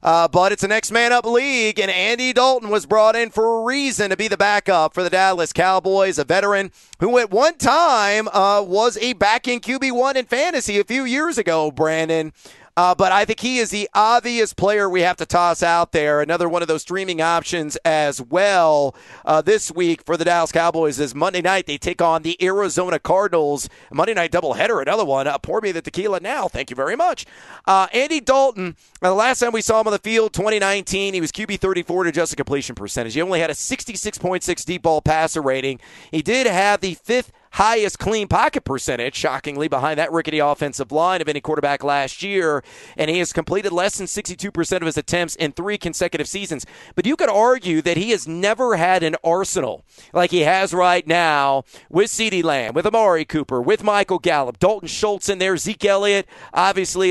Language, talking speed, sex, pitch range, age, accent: English, 205 wpm, male, 160-210 Hz, 40-59, American